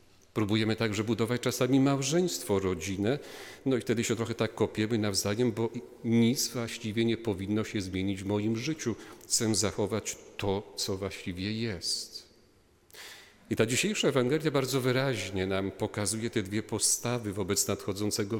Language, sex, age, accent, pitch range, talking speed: Polish, male, 40-59, native, 100-120 Hz, 140 wpm